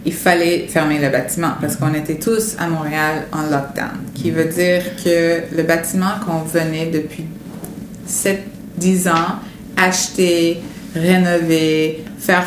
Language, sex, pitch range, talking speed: French, female, 160-200 Hz, 135 wpm